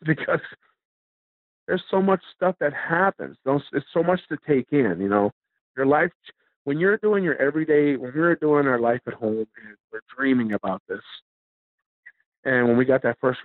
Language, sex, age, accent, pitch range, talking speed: English, male, 50-69, American, 110-140 Hz, 180 wpm